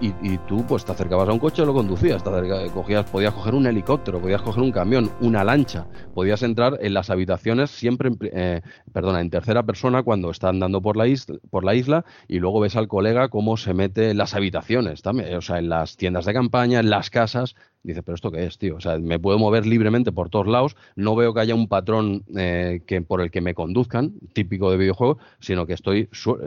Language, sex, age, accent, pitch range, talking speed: Spanish, male, 30-49, Spanish, 90-115 Hz, 230 wpm